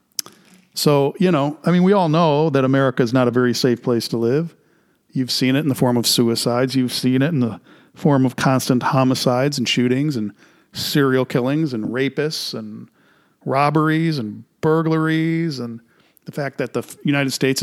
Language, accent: English, American